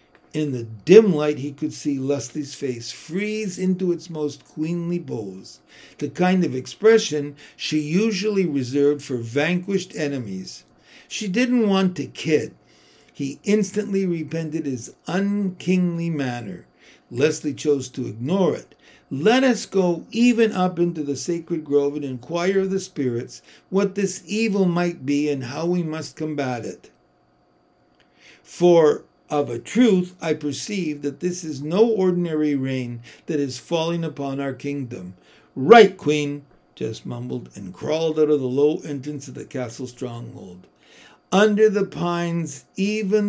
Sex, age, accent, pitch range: male, 60-79, American, 140-185 Hz